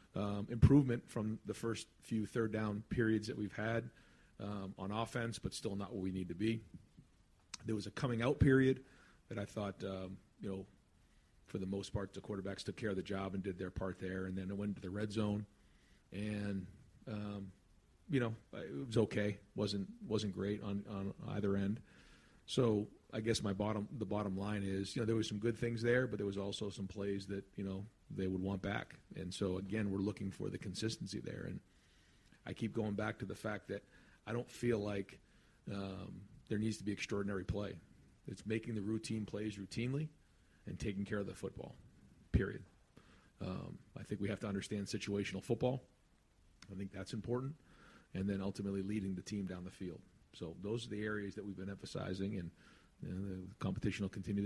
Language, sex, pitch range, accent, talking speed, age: English, male, 95-110 Hz, American, 200 wpm, 40-59